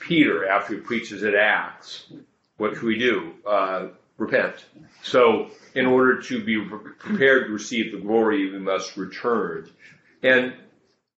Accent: American